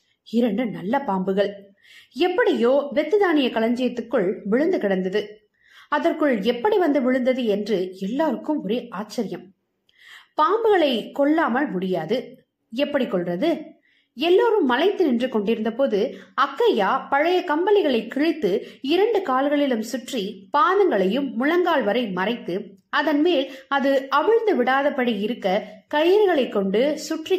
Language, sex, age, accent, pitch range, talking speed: Tamil, female, 20-39, native, 210-310 Hz, 95 wpm